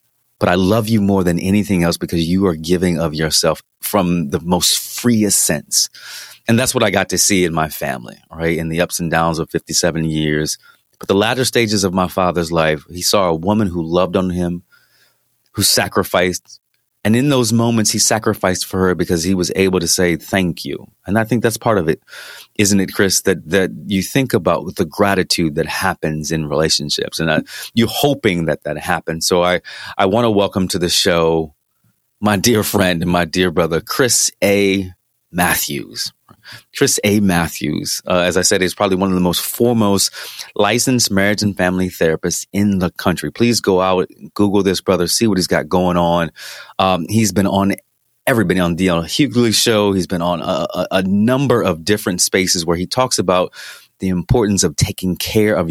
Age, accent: 30-49, American